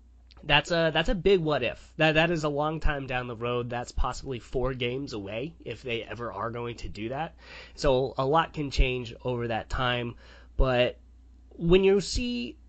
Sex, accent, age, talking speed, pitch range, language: male, American, 20-39, 195 wpm, 120-150 Hz, English